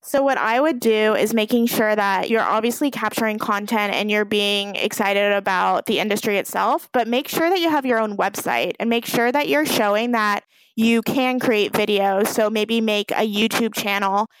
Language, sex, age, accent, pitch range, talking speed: English, female, 20-39, American, 210-235 Hz, 195 wpm